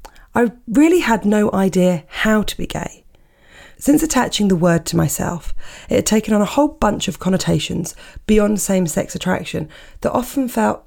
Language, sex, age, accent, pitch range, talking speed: English, female, 30-49, British, 170-220 Hz, 165 wpm